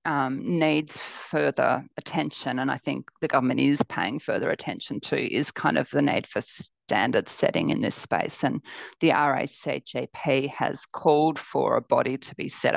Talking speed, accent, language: 170 wpm, Australian, English